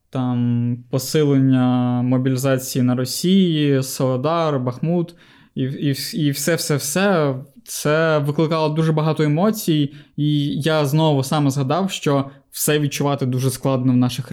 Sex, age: male, 20-39